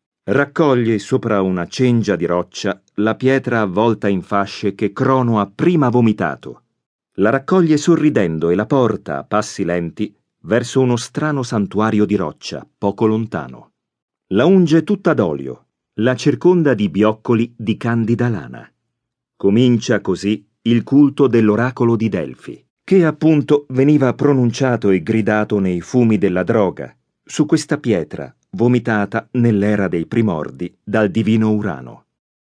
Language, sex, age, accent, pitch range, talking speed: Italian, male, 40-59, native, 100-135 Hz, 130 wpm